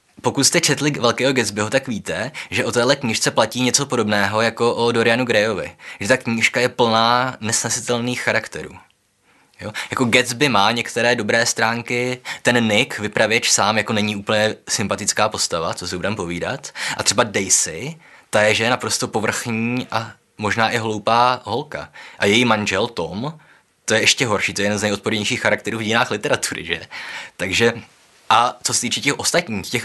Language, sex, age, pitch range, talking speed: Czech, male, 20-39, 105-125 Hz, 170 wpm